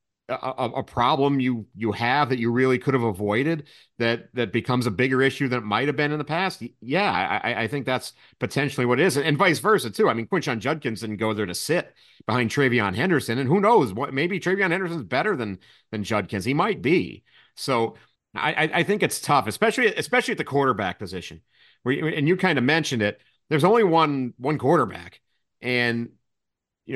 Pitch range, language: 115-150 Hz, English